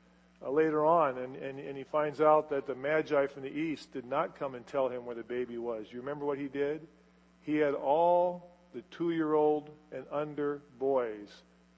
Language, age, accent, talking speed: English, 50-69, American, 190 wpm